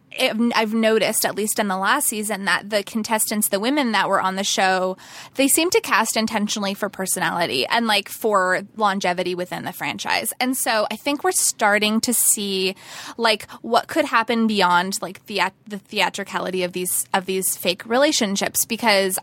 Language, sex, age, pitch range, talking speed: English, female, 20-39, 190-250 Hz, 180 wpm